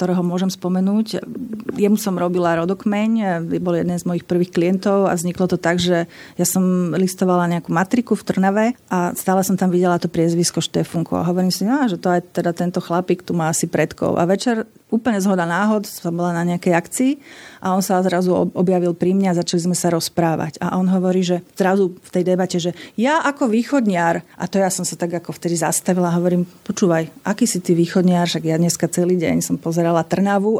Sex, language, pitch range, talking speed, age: female, Slovak, 170-190 Hz, 205 wpm, 40-59